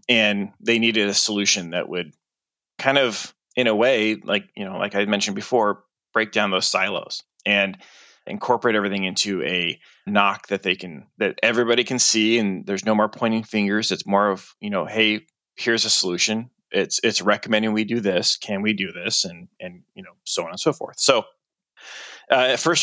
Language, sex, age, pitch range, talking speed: English, male, 20-39, 100-120 Hz, 195 wpm